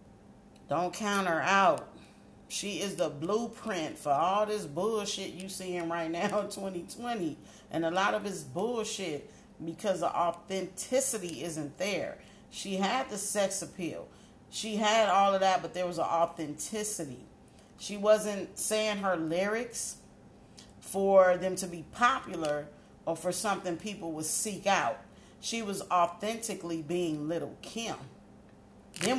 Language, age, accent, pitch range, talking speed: English, 40-59, American, 170-215 Hz, 145 wpm